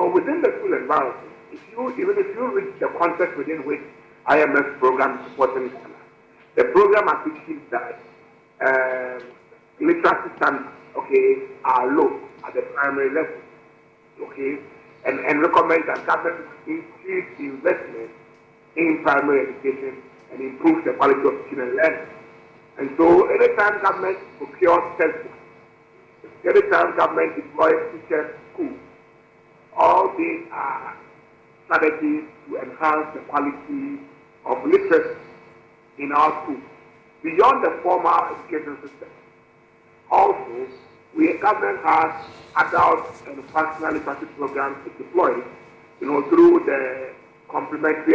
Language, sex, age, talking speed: English, male, 50-69, 125 wpm